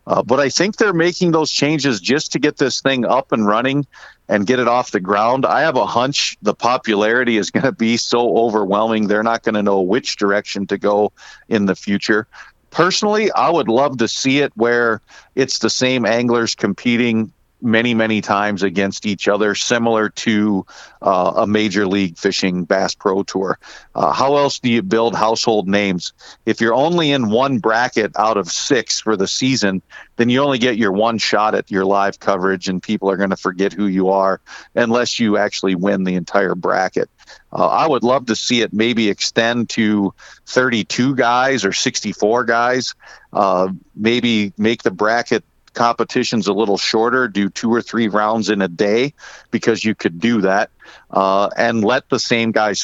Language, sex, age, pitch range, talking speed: English, male, 50-69, 100-120 Hz, 185 wpm